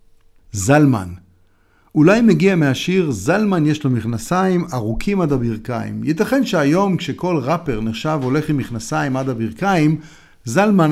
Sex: male